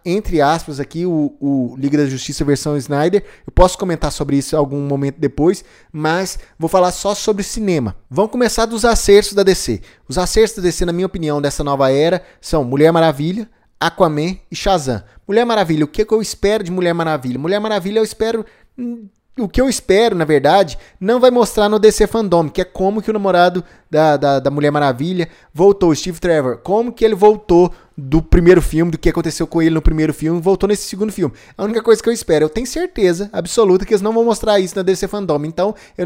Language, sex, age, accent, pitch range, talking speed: Portuguese, male, 20-39, Brazilian, 150-205 Hz, 215 wpm